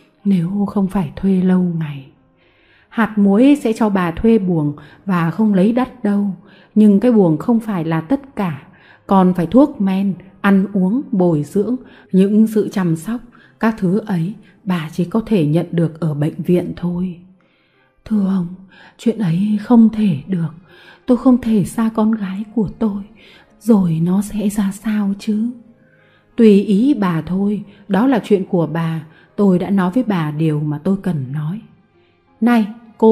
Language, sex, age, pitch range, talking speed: Vietnamese, female, 30-49, 175-220 Hz, 170 wpm